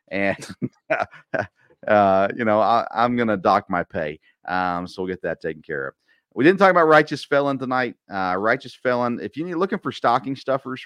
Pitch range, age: 90-130 Hz, 40-59